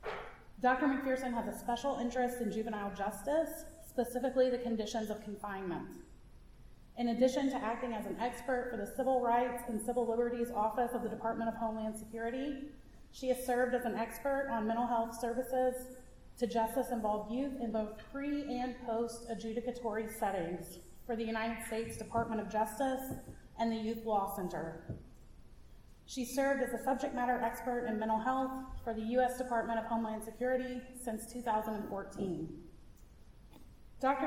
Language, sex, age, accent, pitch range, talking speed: English, female, 30-49, American, 225-255 Hz, 150 wpm